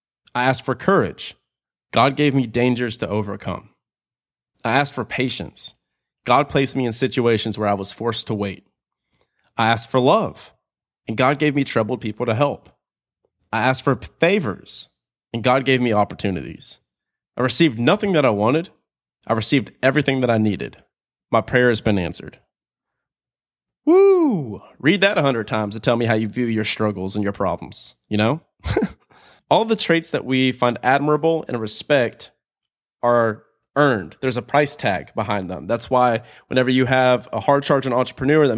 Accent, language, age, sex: American, English, 30-49, male